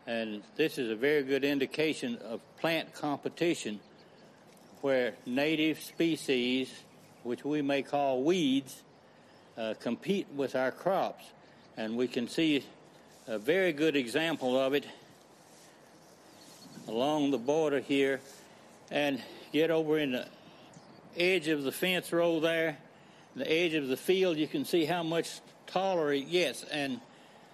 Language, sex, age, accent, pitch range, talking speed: English, male, 60-79, American, 130-170 Hz, 135 wpm